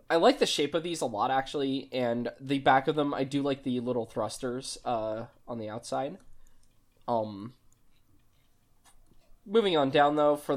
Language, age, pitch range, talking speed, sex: English, 10-29, 125-170 Hz, 170 wpm, male